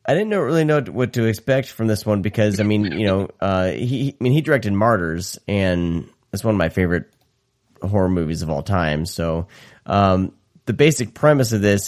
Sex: male